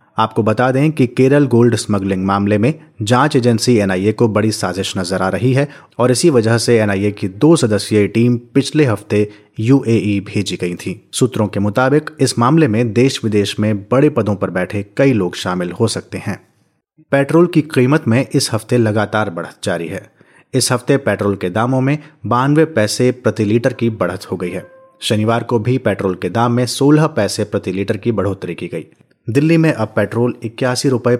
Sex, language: male, Hindi